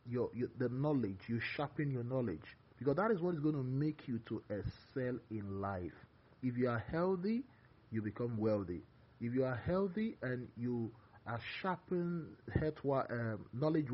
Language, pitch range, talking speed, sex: English, 110-140 Hz, 160 wpm, male